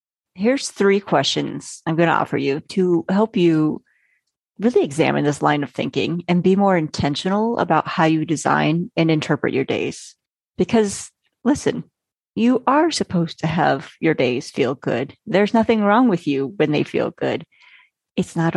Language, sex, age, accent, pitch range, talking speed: English, female, 30-49, American, 160-245 Hz, 165 wpm